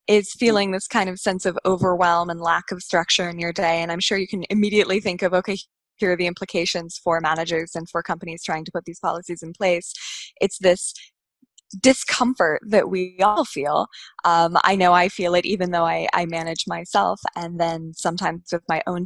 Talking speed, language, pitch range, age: 205 wpm, English, 170-225 Hz, 20-39